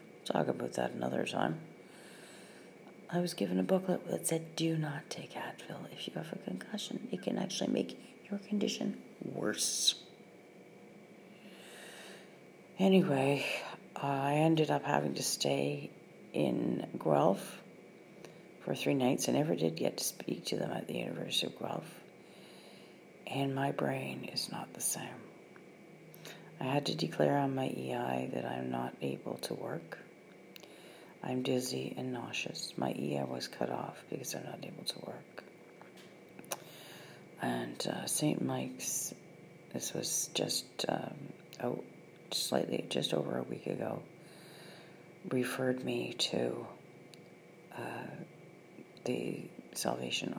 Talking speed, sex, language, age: 130 wpm, female, English, 40-59